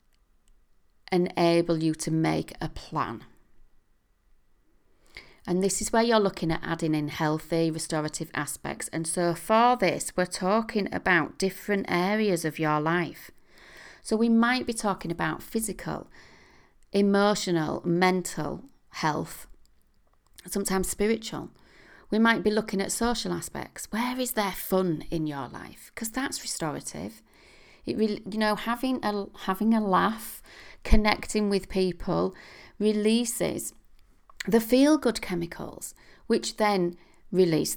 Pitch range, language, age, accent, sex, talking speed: 165-215 Hz, English, 40-59, British, female, 125 wpm